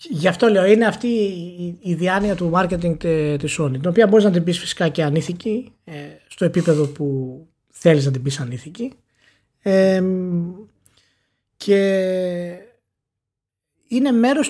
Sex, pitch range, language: male, 150-210 Hz, Greek